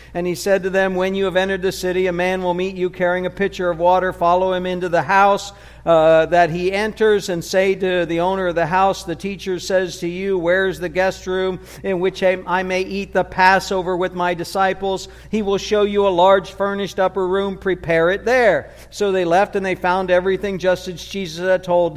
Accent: American